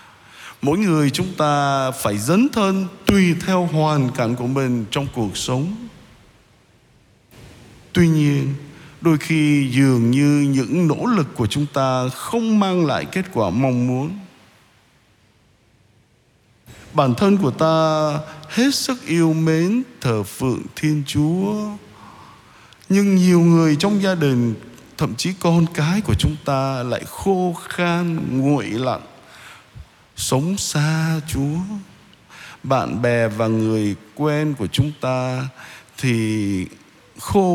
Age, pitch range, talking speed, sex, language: 20-39, 130-180 Hz, 125 wpm, male, Vietnamese